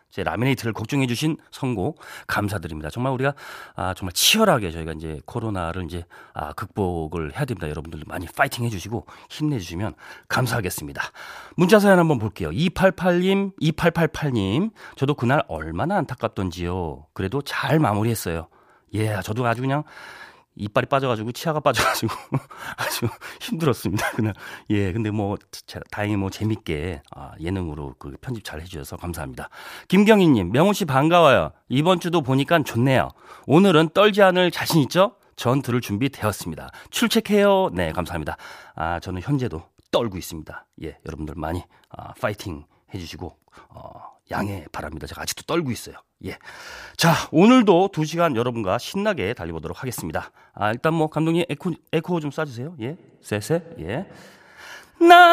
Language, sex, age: Korean, male, 40-59